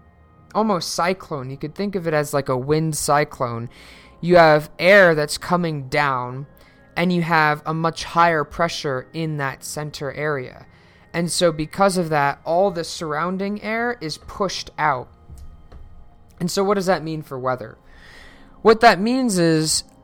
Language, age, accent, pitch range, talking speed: English, 20-39, American, 135-170 Hz, 160 wpm